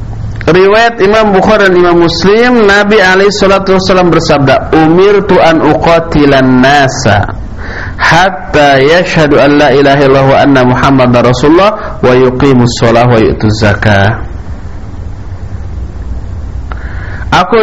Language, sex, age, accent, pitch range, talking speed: English, male, 50-69, Indonesian, 110-180 Hz, 100 wpm